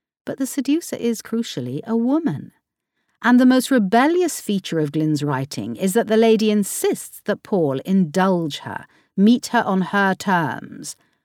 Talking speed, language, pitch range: 155 wpm, English, 160-220 Hz